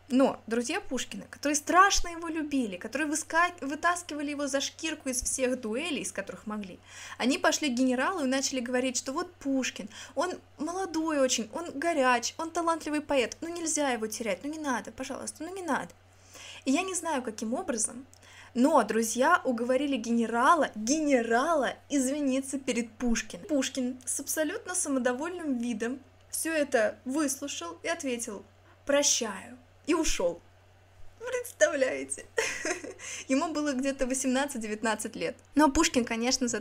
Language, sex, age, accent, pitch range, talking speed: Russian, female, 20-39, native, 235-310 Hz, 140 wpm